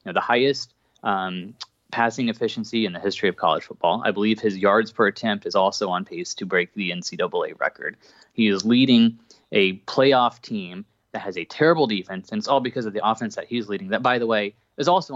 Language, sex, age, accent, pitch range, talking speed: English, male, 20-39, American, 100-125 Hz, 220 wpm